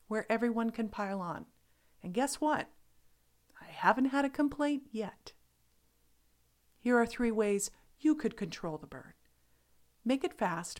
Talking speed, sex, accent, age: 145 wpm, female, American, 50-69